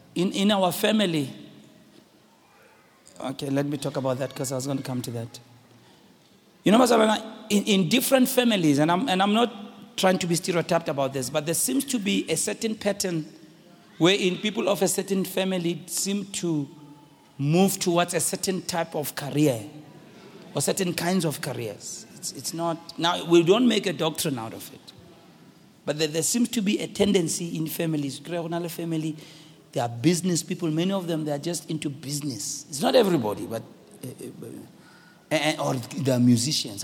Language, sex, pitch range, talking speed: English, male, 145-195 Hz, 180 wpm